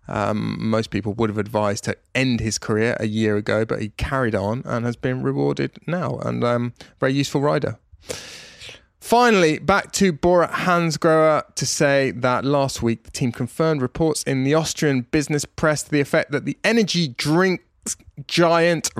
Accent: British